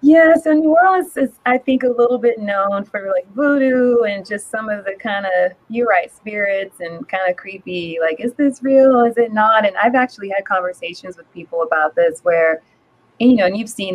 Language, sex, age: English, female, 20-39